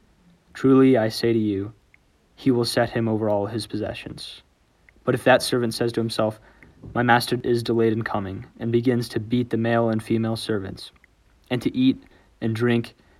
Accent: American